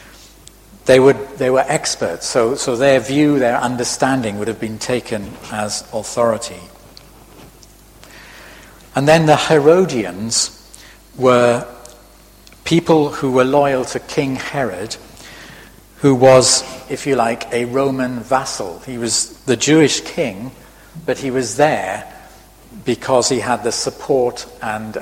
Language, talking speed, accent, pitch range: English, 120 wpm, British, 110-135 Hz